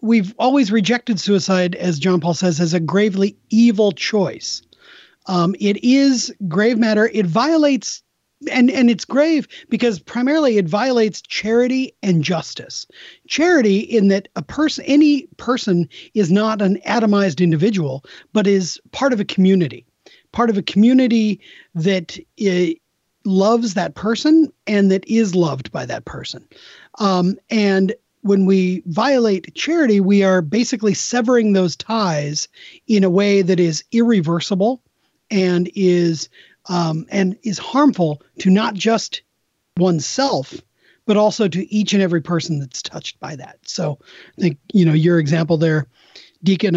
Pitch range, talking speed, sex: 180-235 Hz, 145 wpm, male